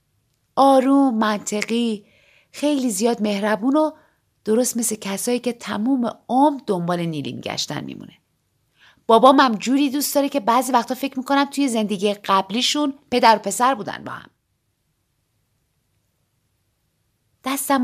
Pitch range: 180-260 Hz